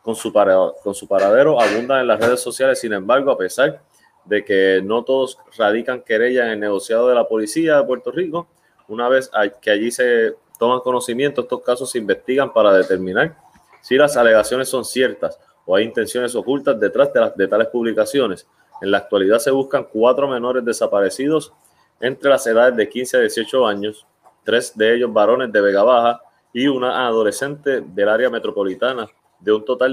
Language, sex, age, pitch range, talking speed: Spanish, male, 30-49, 110-135 Hz, 175 wpm